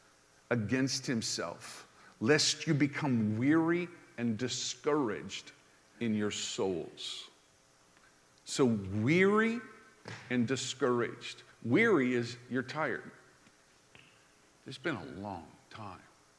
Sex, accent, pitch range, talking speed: male, American, 115-155 Hz, 90 wpm